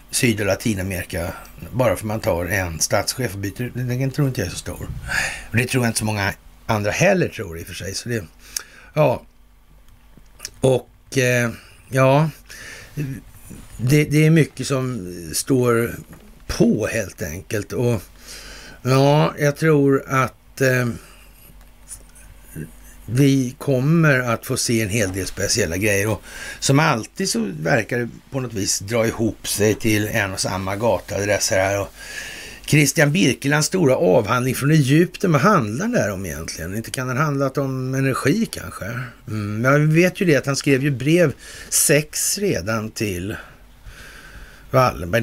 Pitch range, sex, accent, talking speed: 100-140 Hz, male, native, 155 wpm